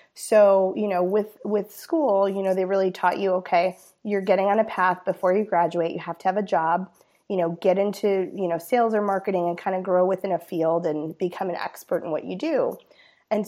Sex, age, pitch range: female, 20-39, 180-220 Hz